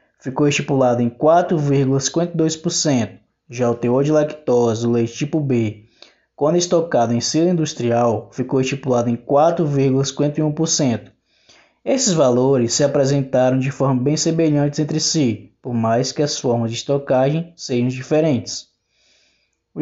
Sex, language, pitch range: male, Portuguese, 125-160 Hz